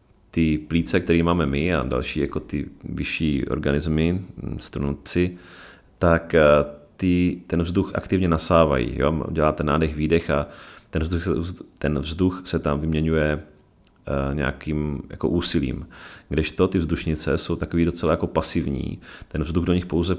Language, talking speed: Czech, 135 wpm